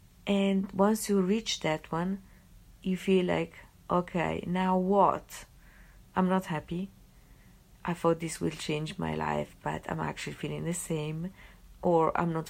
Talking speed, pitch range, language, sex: 150 wpm, 170-205 Hz, English, female